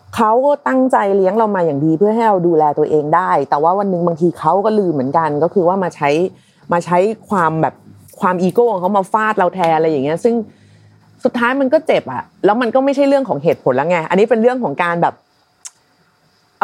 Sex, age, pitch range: female, 30-49, 175-250 Hz